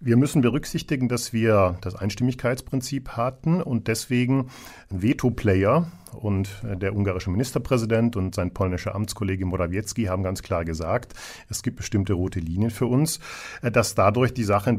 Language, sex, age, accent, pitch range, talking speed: German, male, 50-69, German, 100-130 Hz, 150 wpm